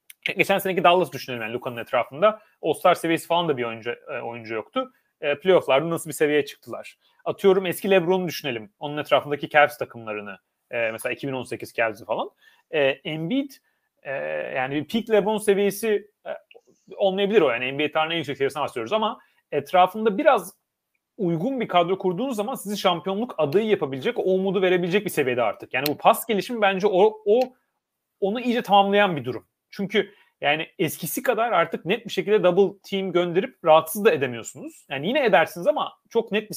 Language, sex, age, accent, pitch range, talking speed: Turkish, male, 30-49, native, 155-215 Hz, 165 wpm